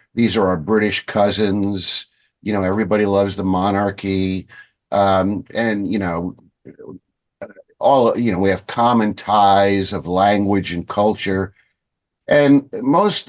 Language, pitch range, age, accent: English, 100-120 Hz, 50-69, American